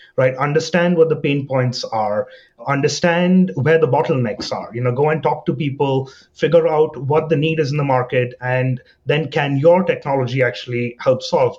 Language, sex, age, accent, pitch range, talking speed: English, male, 30-49, Indian, 125-160 Hz, 185 wpm